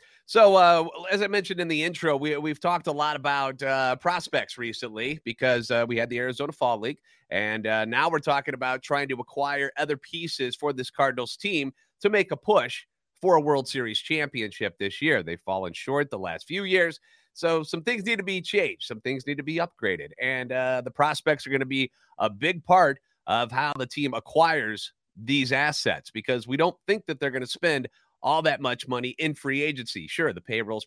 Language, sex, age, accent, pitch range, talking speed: English, male, 30-49, American, 125-170 Hz, 210 wpm